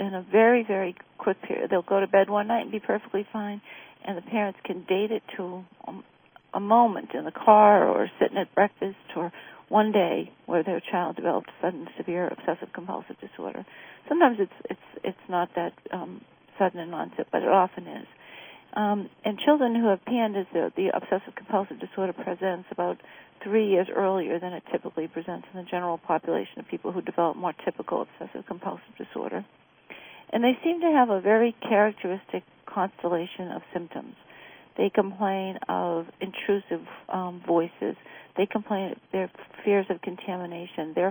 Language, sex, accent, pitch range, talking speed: English, female, American, 175-205 Hz, 170 wpm